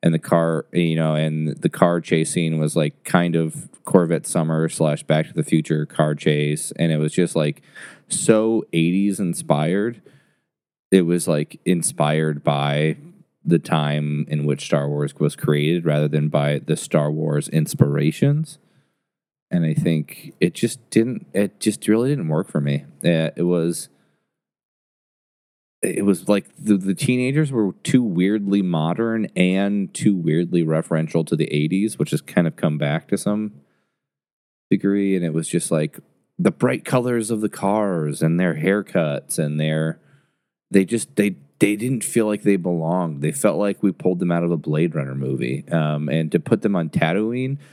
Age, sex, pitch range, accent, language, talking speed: 20-39, male, 75-105 Hz, American, English, 170 wpm